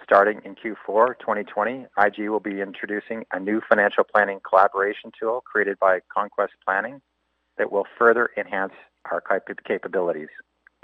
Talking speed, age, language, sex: 135 wpm, 50-69, English, male